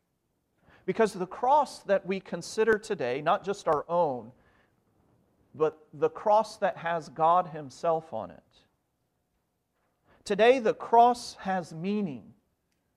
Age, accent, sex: 40-59, American, male